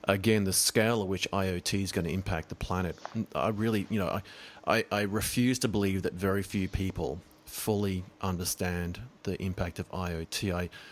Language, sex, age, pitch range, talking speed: English, male, 30-49, 90-100 Hz, 180 wpm